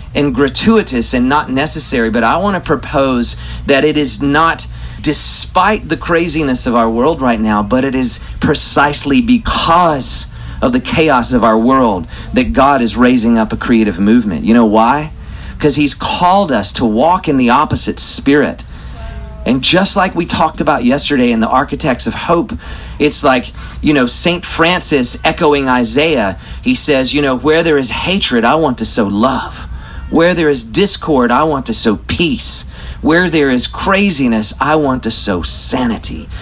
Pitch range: 115-160 Hz